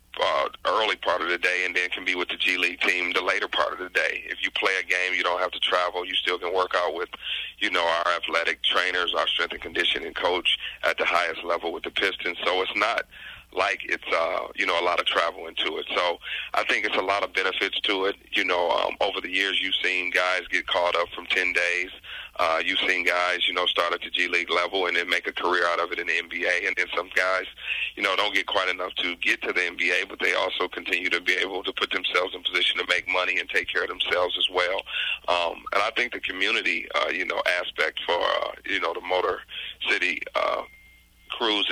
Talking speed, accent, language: 245 wpm, American, English